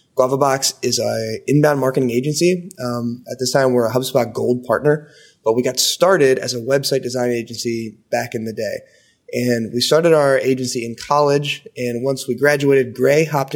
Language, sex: English, male